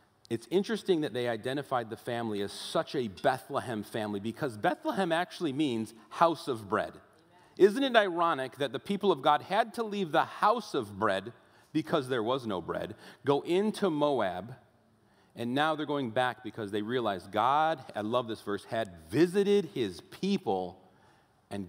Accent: American